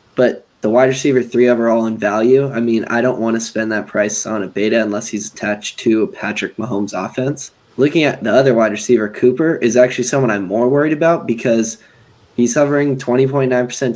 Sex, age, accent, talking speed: male, 10-29, American, 200 wpm